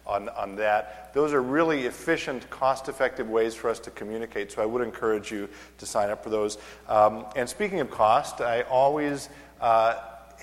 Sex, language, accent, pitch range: male, English, American, 110-130 Hz